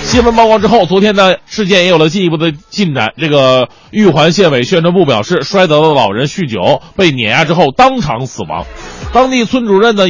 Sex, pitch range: male, 160-225 Hz